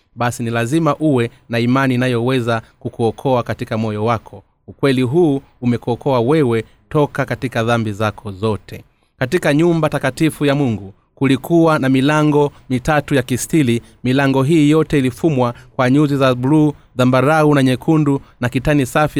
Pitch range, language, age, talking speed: 120-145 Hz, Swahili, 30-49, 140 wpm